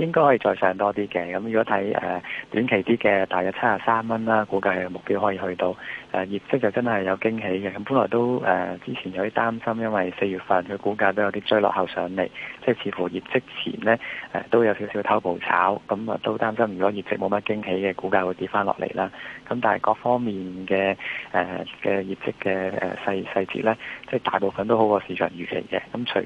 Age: 20-39